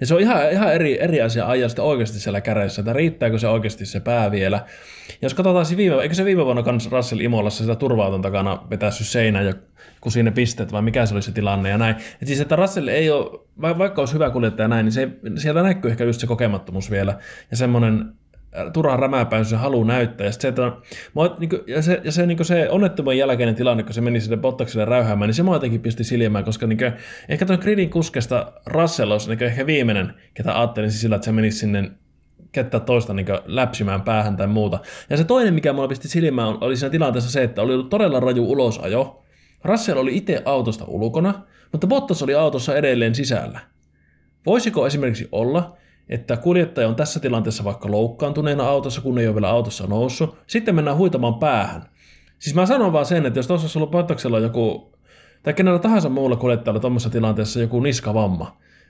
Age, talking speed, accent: 20-39, 195 wpm, native